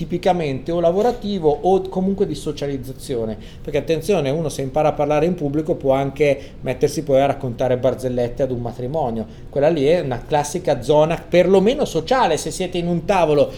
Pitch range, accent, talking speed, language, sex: 140-180 Hz, native, 170 wpm, Italian, male